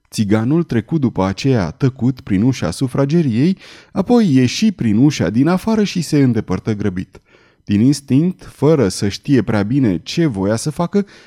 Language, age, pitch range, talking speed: Romanian, 30-49, 110-155 Hz, 155 wpm